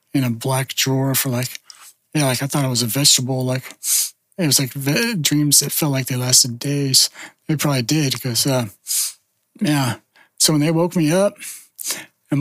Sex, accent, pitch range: male, American, 135-155 Hz